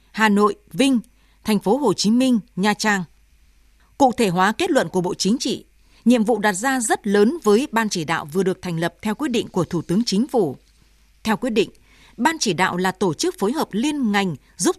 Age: 20-39